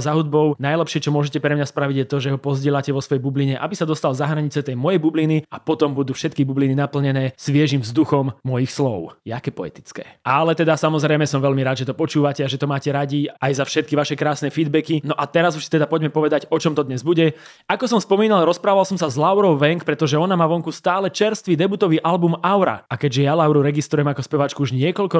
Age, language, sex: 20-39, English, male